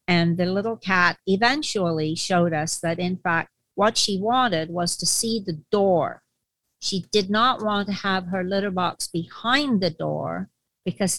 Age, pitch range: 50-69, 180-220 Hz